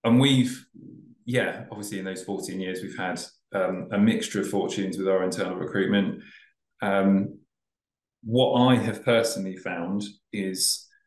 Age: 20-39